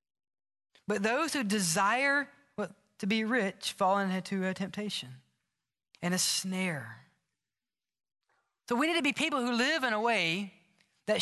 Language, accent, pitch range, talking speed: English, American, 160-220 Hz, 140 wpm